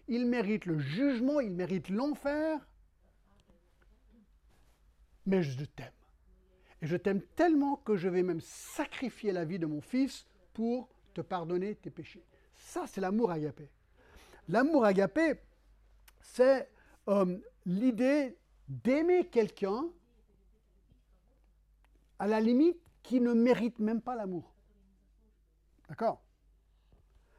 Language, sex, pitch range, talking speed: French, male, 175-250 Hz, 105 wpm